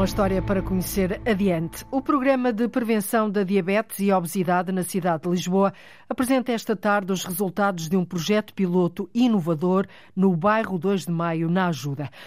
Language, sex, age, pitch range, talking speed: Portuguese, female, 50-69, 180-210 Hz, 165 wpm